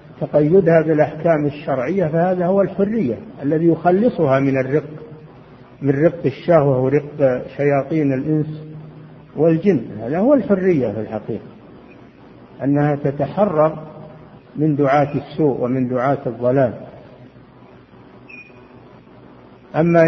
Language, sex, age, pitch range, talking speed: Arabic, male, 50-69, 135-165 Hz, 95 wpm